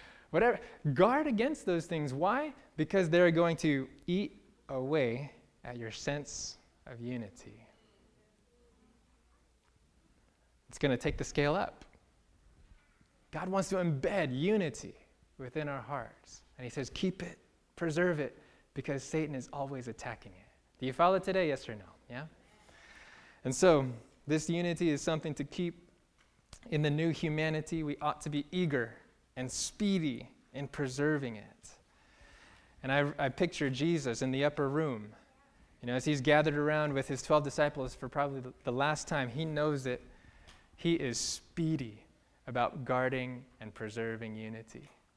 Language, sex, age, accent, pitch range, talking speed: English, male, 20-39, American, 130-175 Hz, 145 wpm